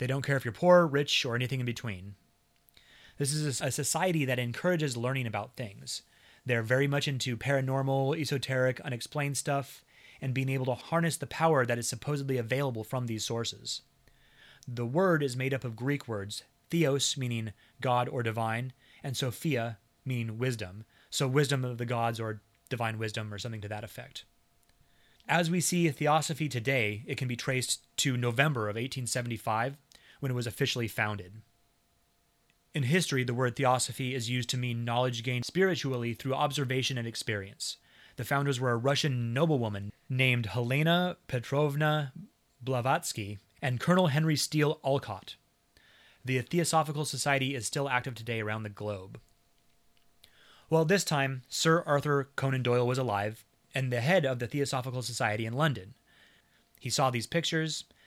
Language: English